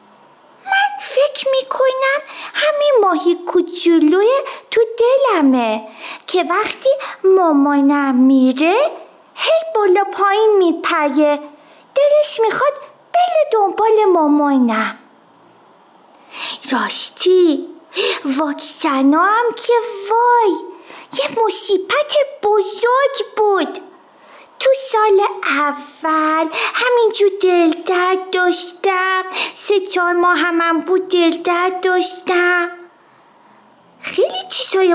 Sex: female